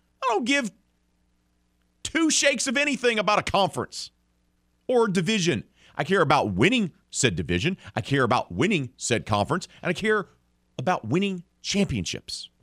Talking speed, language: 145 wpm, English